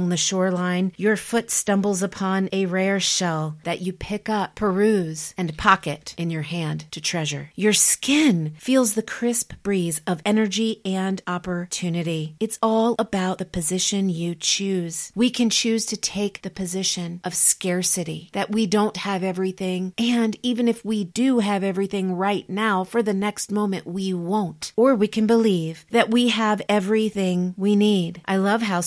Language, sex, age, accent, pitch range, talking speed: English, female, 40-59, American, 180-215 Hz, 165 wpm